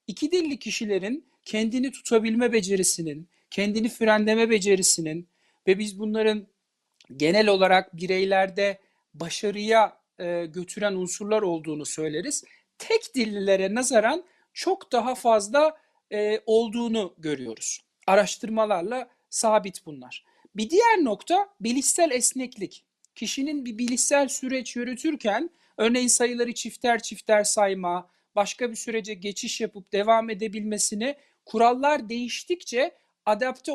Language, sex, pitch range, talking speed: Turkish, male, 205-255 Hz, 100 wpm